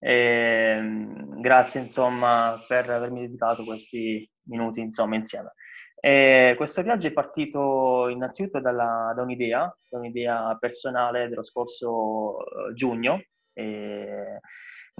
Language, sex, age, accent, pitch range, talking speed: Italian, male, 20-39, native, 115-130 Hz, 110 wpm